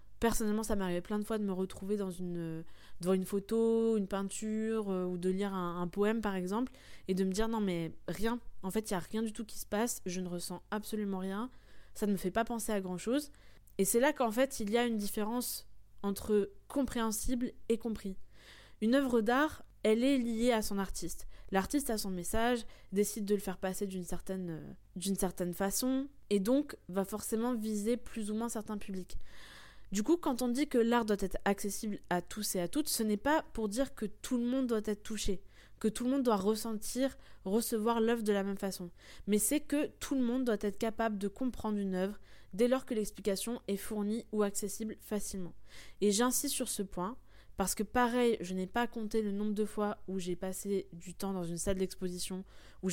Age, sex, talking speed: 20-39, female, 215 wpm